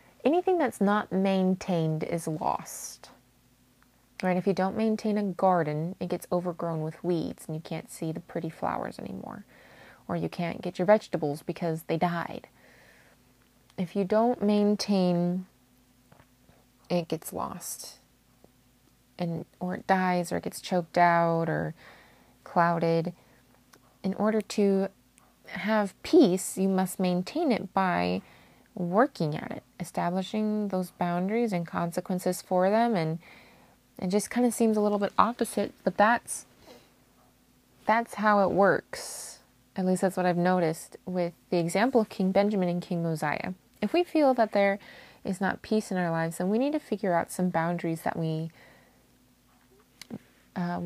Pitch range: 170-205 Hz